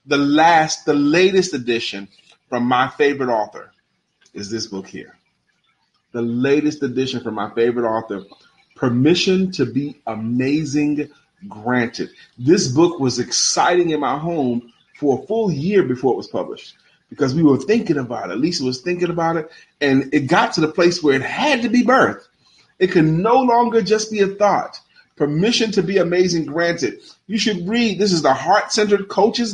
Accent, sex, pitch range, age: American, male, 145-205 Hz, 30-49